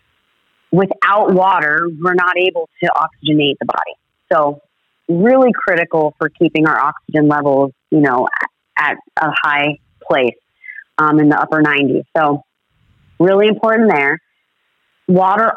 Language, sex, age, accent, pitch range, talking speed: English, female, 30-49, American, 155-185 Hz, 130 wpm